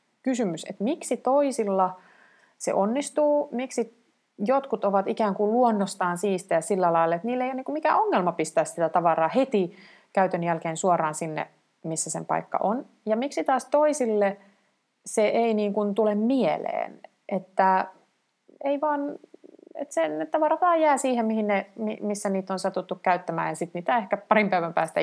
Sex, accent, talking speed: female, native, 160 wpm